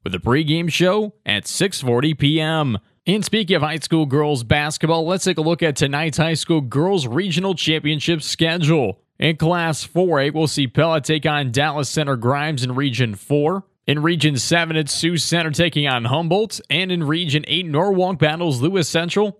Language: English